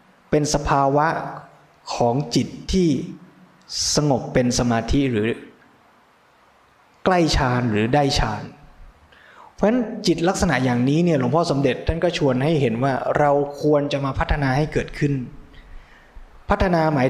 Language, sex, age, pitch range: Thai, male, 20-39, 130-165 Hz